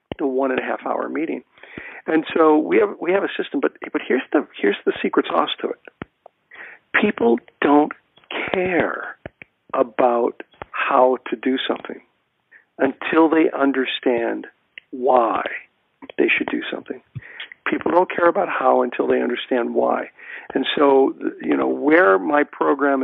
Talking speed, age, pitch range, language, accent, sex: 150 wpm, 50-69, 120-145 Hz, English, American, male